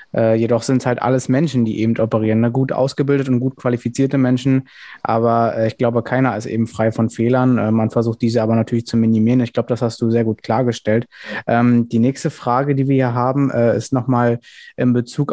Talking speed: 220 wpm